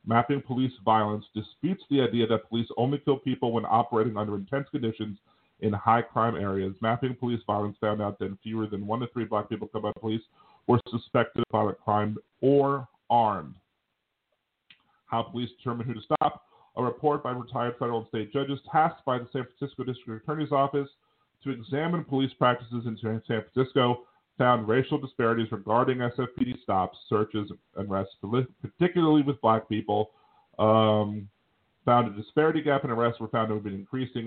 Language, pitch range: English, 110-135 Hz